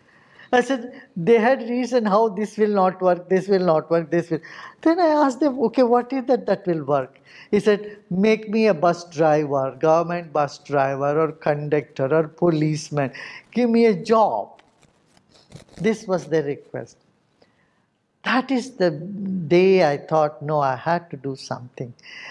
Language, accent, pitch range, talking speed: English, Indian, 155-220 Hz, 165 wpm